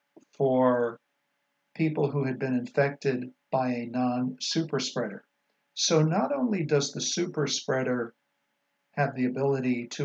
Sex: male